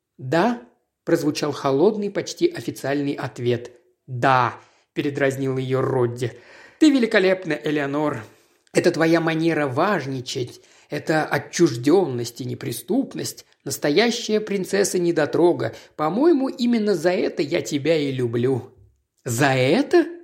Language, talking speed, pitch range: Russian, 100 wpm, 135-190 Hz